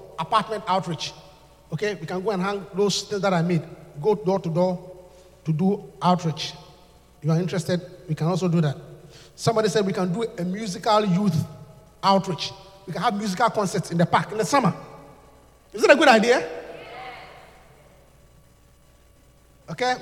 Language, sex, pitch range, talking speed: English, male, 165-245 Hz, 165 wpm